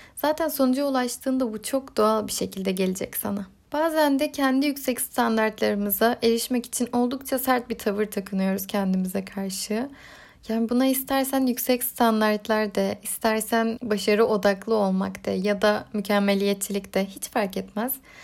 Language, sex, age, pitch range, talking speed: Turkish, female, 10-29, 215-265 Hz, 140 wpm